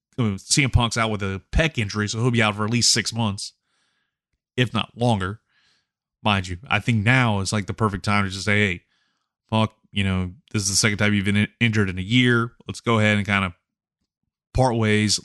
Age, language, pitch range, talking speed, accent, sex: 20-39, English, 105-125 Hz, 230 wpm, American, male